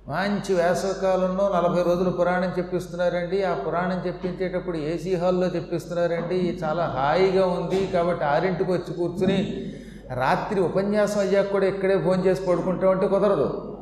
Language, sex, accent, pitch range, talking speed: Telugu, male, native, 170-200 Hz, 125 wpm